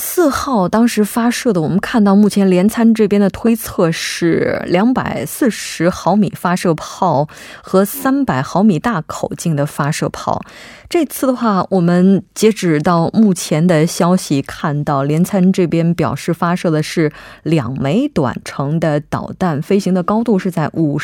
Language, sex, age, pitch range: Korean, female, 20-39, 160-220 Hz